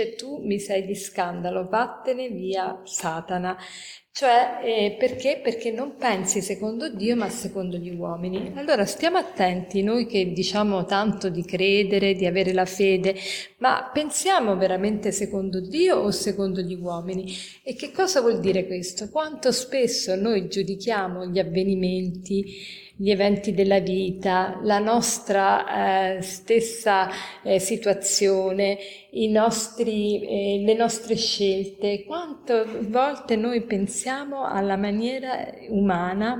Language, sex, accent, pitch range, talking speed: Italian, female, native, 190-230 Hz, 125 wpm